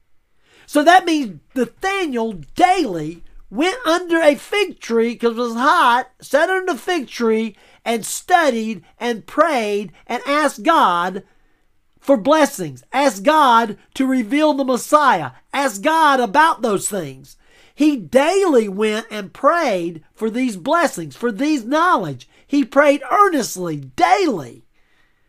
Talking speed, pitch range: 130 wpm, 215-305 Hz